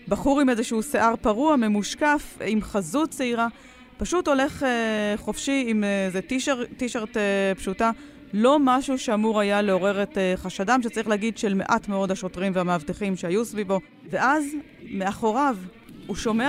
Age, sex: 30-49, female